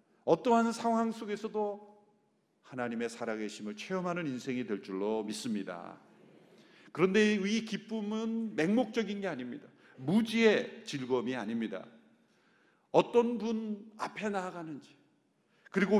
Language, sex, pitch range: Korean, male, 135-215 Hz